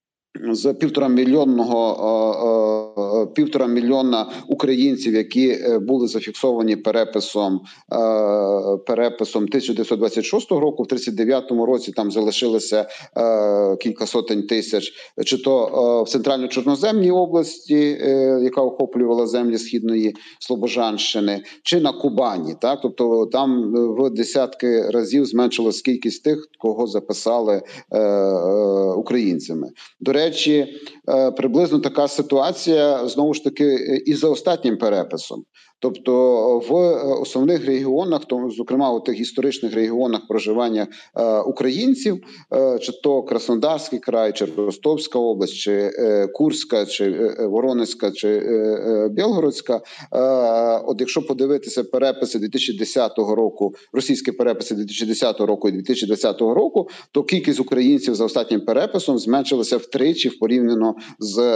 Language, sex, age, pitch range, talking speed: Ukrainian, male, 40-59, 110-135 Hz, 105 wpm